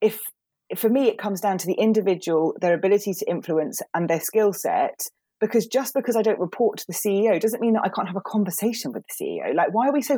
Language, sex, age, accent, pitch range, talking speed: English, female, 30-49, British, 170-225 Hz, 255 wpm